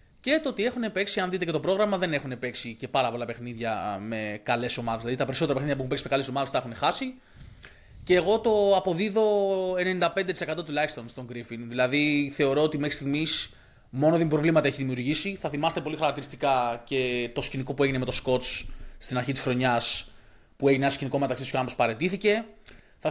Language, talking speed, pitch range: Greek, 195 wpm, 130-190 Hz